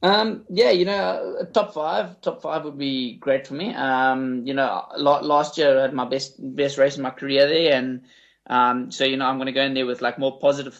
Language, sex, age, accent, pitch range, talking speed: English, male, 20-39, Australian, 125-140 Hz, 240 wpm